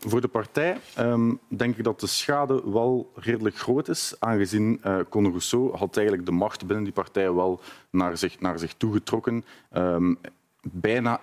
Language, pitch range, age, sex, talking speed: Dutch, 90-115 Hz, 40-59, male, 170 wpm